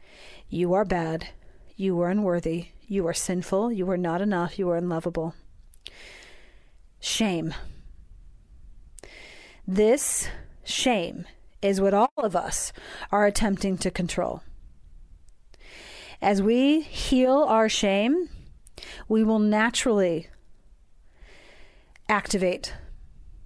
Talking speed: 95 wpm